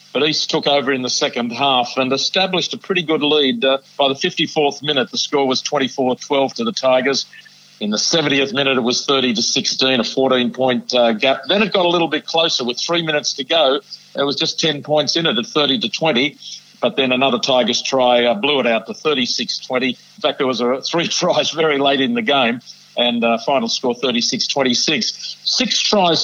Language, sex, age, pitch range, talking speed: English, male, 50-69, 130-165 Hz, 200 wpm